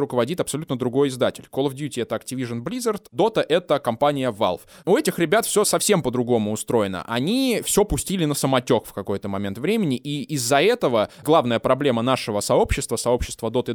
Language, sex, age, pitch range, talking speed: Russian, male, 20-39, 120-165 Hz, 170 wpm